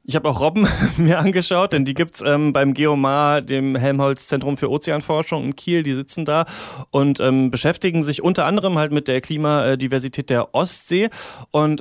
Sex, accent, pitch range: male, German, 130-155 Hz